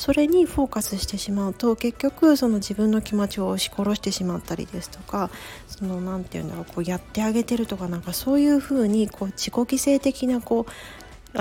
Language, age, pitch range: Japanese, 40-59, 190-230 Hz